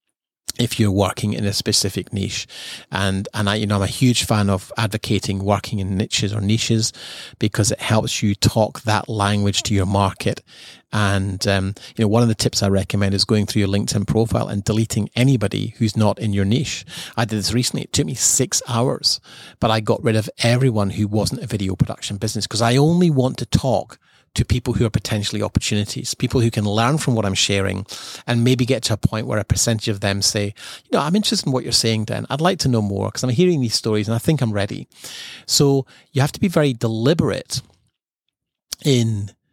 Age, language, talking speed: 30-49, English, 215 wpm